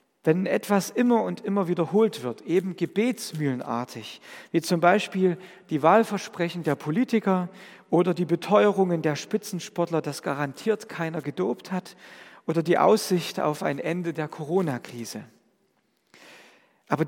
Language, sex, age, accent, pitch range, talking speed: German, male, 50-69, German, 155-200 Hz, 125 wpm